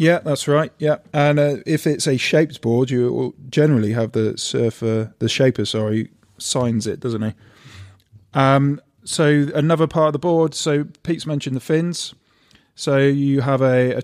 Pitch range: 115-135 Hz